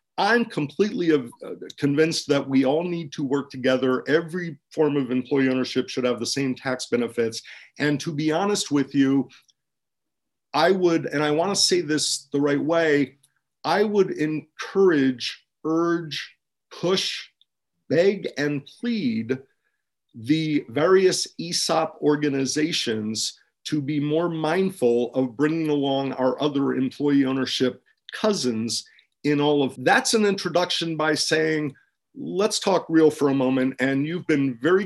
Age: 50-69